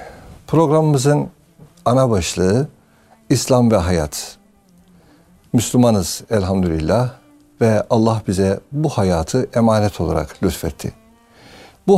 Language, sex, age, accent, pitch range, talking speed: Turkish, male, 60-79, native, 95-140 Hz, 85 wpm